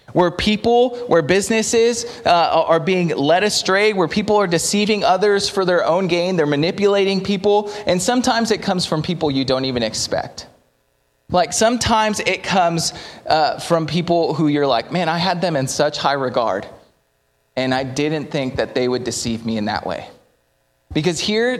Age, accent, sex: 20-39, American, male